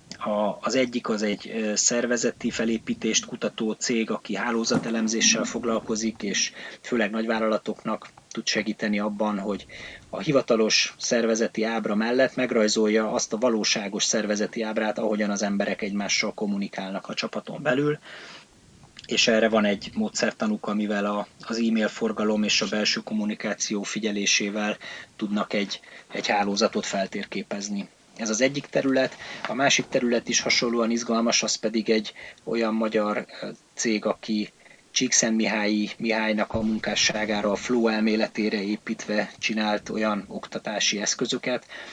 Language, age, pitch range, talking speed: Hungarian, 30-49, 105-120 Hz, 125 wpm